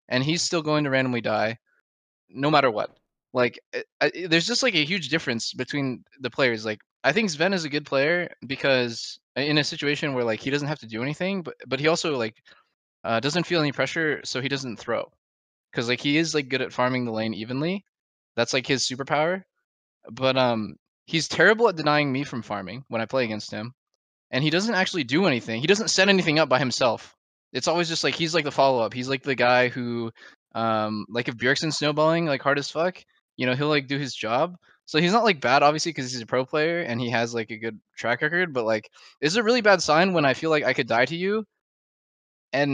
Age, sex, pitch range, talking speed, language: 20-39, male, 120-160 Hz, 230 wpm, English